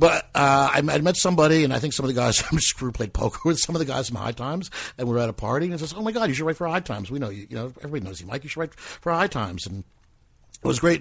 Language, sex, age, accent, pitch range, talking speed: English, male, 60-79, American, 105-160 Hz, 335 wpm